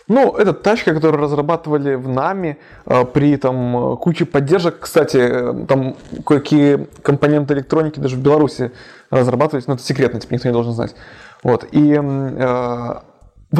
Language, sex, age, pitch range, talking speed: Russian, male, 20-39, 130-170 Hz, 135 wpm